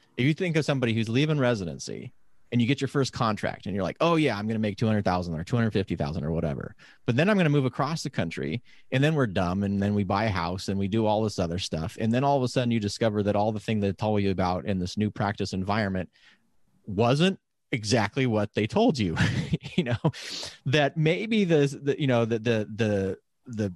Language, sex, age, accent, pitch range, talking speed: English, male, 30-49, American, 105-145 Hz, 245 wpm